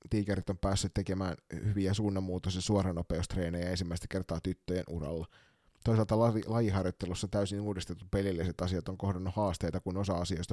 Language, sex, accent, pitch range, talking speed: Finnish, male, native, 85-105 Hz, 140 wpm